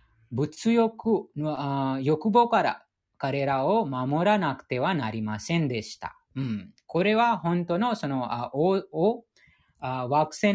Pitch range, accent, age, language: 135-210 Hz, Indian, 20-39, Japanese